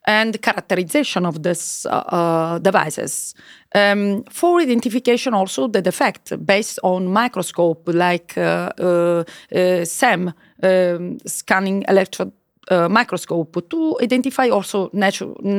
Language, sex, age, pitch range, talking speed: Polish, female, 30-49, 185-240 Hz, 120 wpm